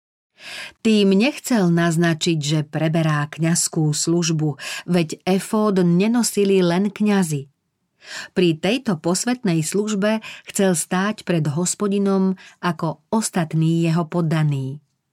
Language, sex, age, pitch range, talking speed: Slovak, female, 40-59, 155-200 Hz, 95 wpm